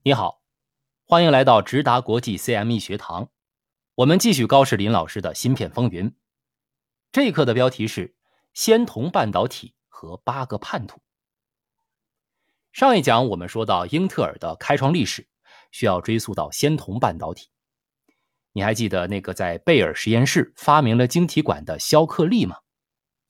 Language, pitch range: Chinese, 110-175 Hz